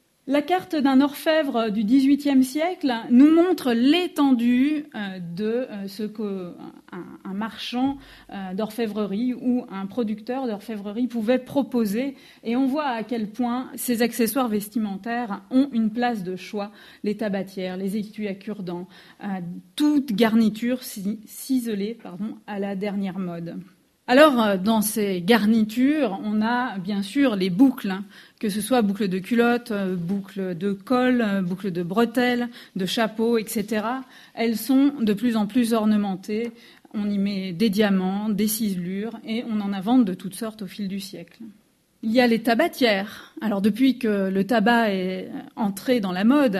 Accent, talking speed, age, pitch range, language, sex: French, 145 wpm, 30-49, 200-250 Hz, French, female